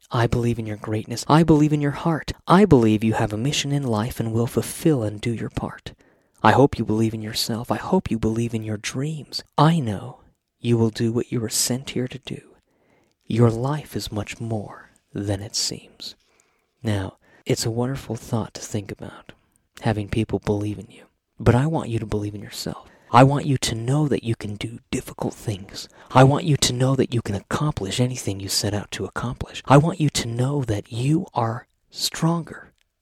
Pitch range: 105-135 Hz